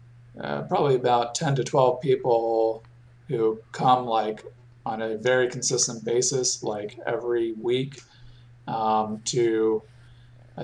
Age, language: 40-59, English